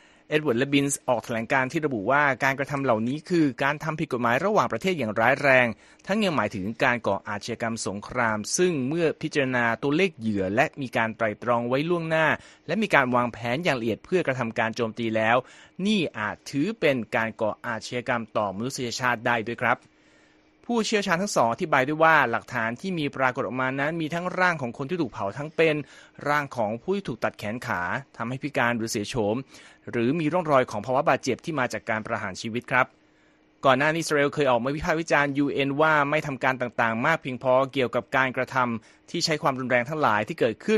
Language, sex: Thai, male